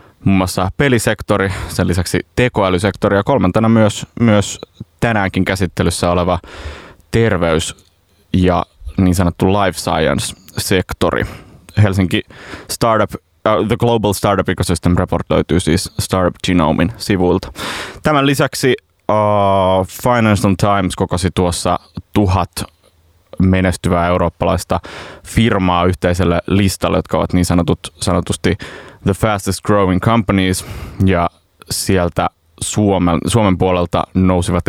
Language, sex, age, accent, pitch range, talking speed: Finnish, male, 20-39, native, 90-105 Hz, 105 wpm